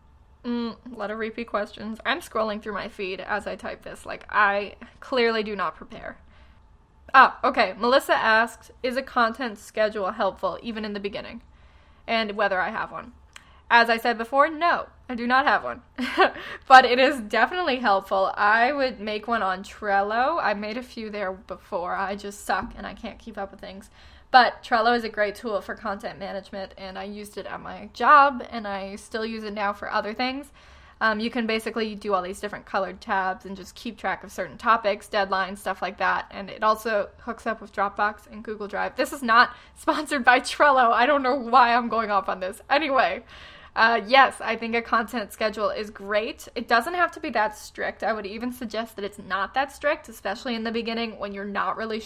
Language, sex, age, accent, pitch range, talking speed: English, female, 10-29, American, 200-240 Hz, 210 wpm